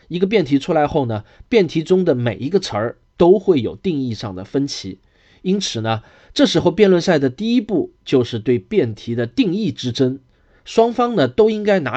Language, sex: Chinese, male